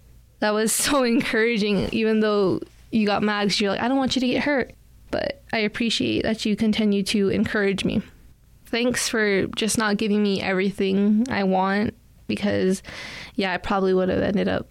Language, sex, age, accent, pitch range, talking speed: English, female, 10-29, American, 195-220 Hz, 180 wpm